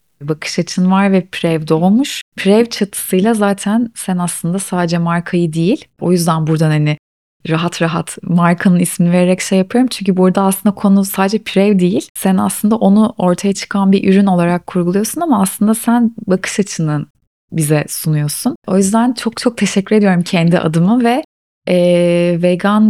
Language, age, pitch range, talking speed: Turkish, 30-49, 170-205 Hz, 155 wpm